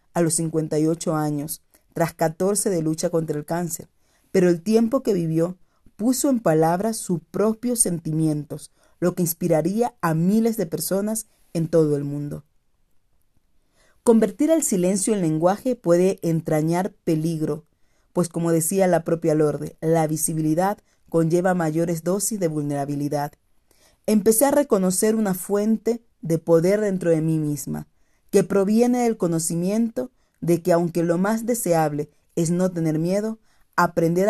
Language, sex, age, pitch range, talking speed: Spanish, female, 40-59, 155-200 Hz, 140 wpm